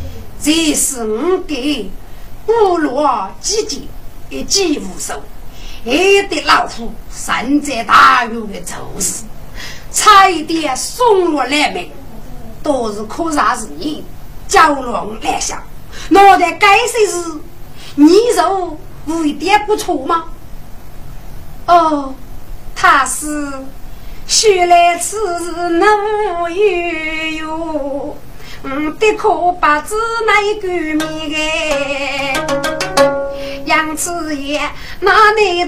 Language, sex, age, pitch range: Chinese, female, 50-69, 275-355 Hz